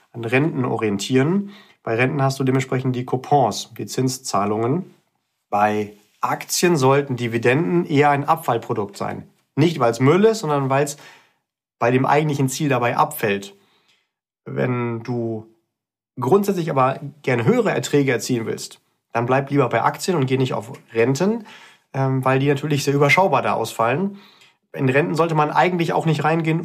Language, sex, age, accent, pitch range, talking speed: German, male, 40-59, German, 130-175 Hz, 155 wpm